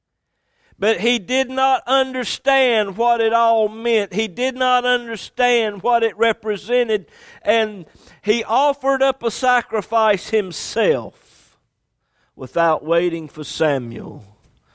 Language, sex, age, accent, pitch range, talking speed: English, male, 50-69, American, 140-195 Hz, 110 wpm